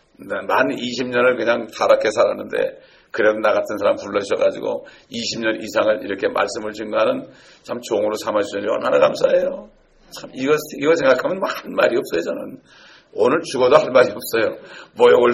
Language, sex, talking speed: English, male, 135 wpm